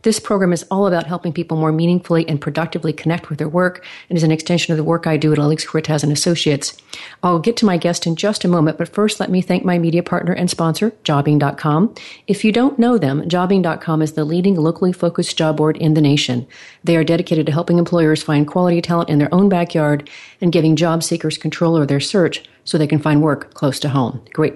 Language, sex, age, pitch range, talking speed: English, female, 40-59, 150-175 Hz, 230 wpm